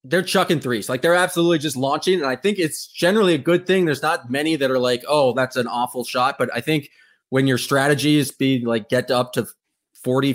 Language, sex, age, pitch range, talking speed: English, male, 20-39, 130-175 Hz, 230 wpm